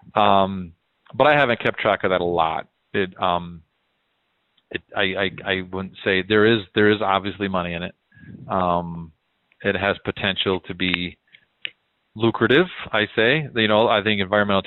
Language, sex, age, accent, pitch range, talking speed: English, male, 40-59, American, 100-115 Hz, 165 wpm